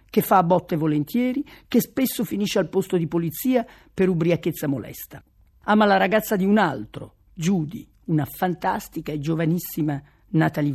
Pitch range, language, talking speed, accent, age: 165-230 Hz, Italian, 150 wpm, native, 50-69